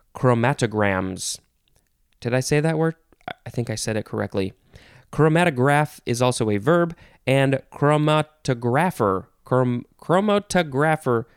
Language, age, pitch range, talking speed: English, 20-39, 115-155 Hz, 105 wpm